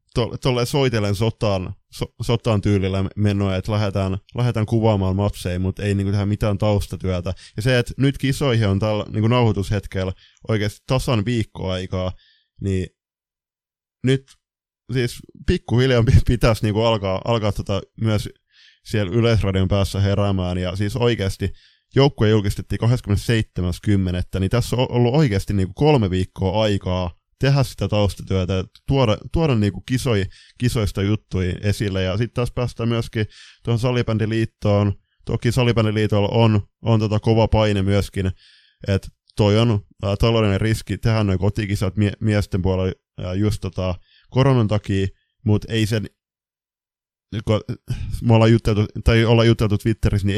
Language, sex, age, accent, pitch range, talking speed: Finnish, male, 20-39, native, 100-115 Hz, 130 wpm